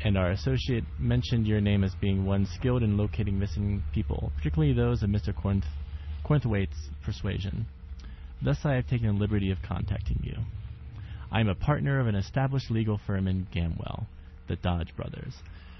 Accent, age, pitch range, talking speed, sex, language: American, 30-49, 90-115 Hz, 165 wpm, male, English